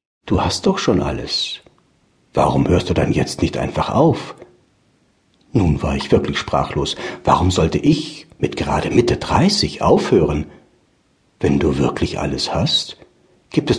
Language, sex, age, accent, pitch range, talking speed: German, male, 60-79, German, 85-135 Hz, 145 wpm